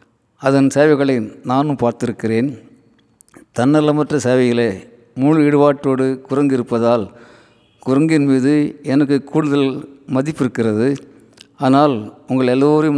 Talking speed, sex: 85 wpm, male